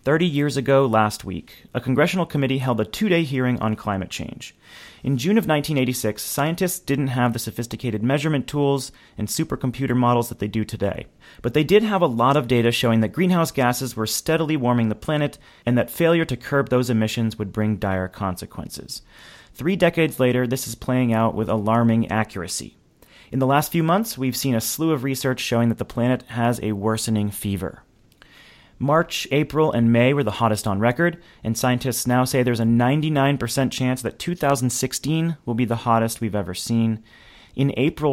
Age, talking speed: 30-49, 185 wpm